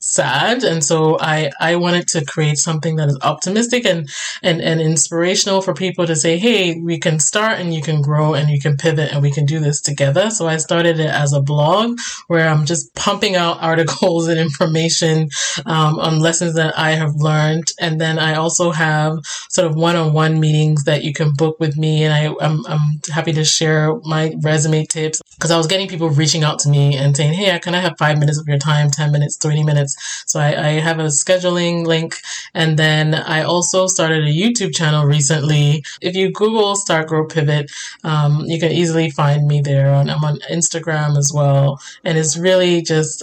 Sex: male